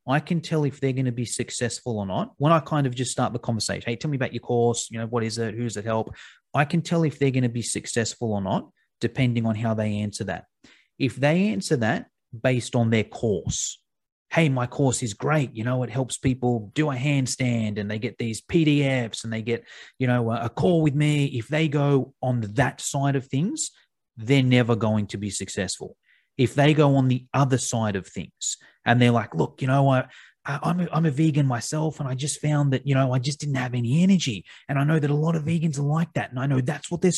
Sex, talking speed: male, 240 wpm